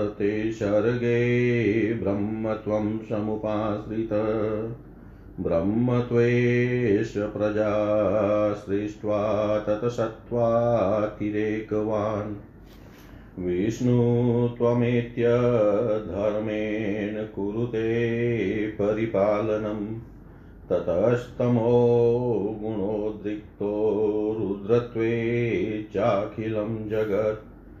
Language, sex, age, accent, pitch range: Hindi, male, 40-59, native, 105-120 Hz